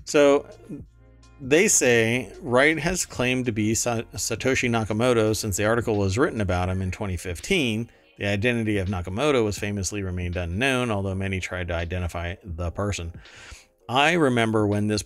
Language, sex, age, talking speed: English, male, 40-59, 150 wpm